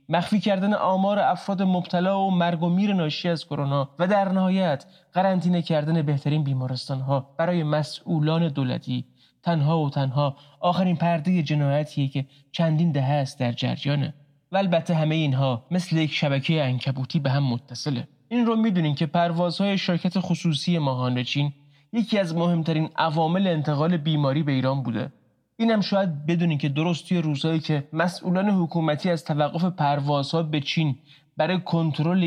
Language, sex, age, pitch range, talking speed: Persian, male, 20-39, 140-175 Hz, 145 wpm